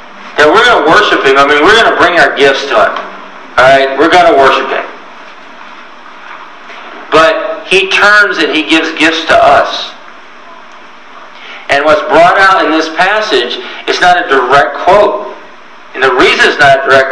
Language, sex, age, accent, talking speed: English, male, 50-69, American, 170 wpm